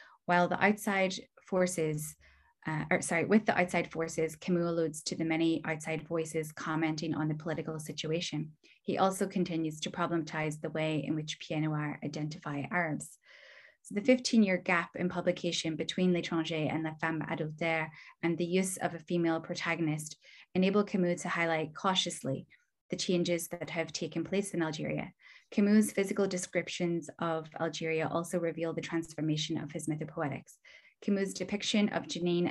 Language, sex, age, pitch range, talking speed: English, female, 10-29, 160-180 Hz, 155 wpm